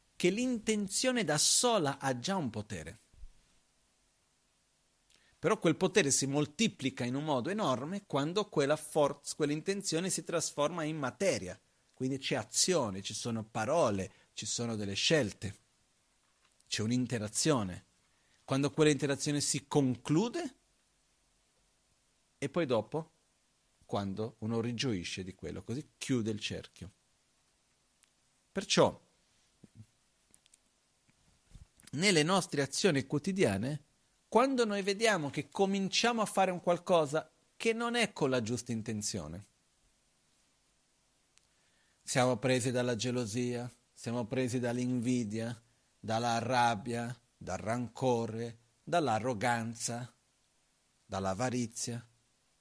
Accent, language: native, Italian